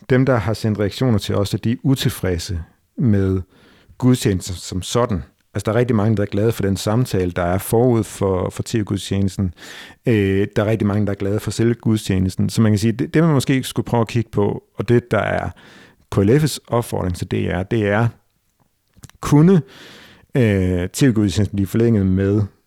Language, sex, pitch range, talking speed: Danish, male, 100-130 Hz, 195 wpm